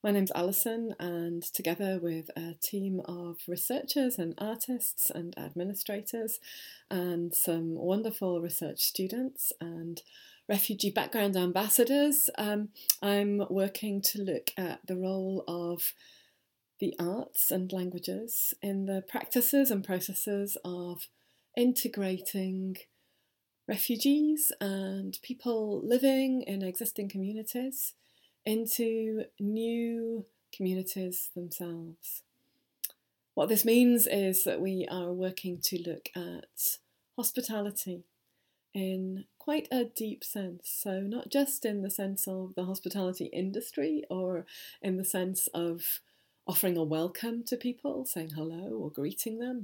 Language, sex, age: English, female, 30-49